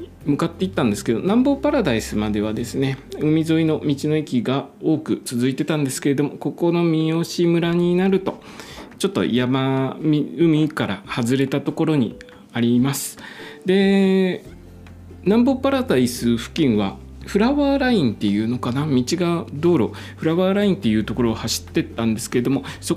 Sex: male